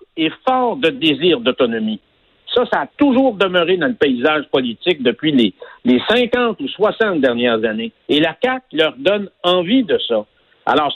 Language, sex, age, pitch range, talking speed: French, male, 60-79, 165-255 Hz, 170 wpm